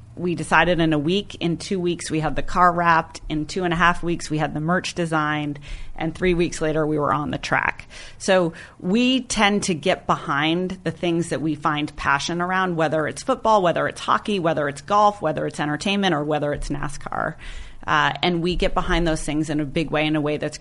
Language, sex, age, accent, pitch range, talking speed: English, female, 30-49, American, 150-180 Hz, 225 wpm